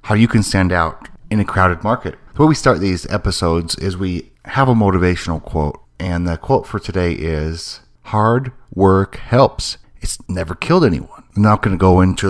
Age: 30-49